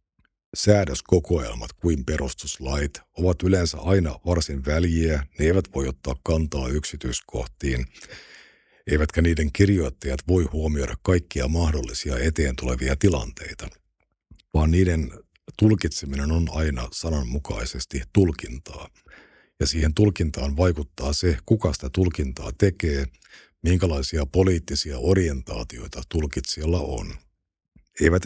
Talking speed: 100 wpm